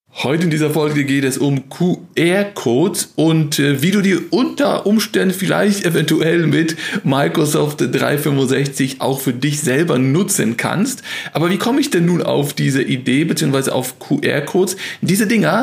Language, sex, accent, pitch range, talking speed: German, male, German, 140-175 Hz, 155 wpm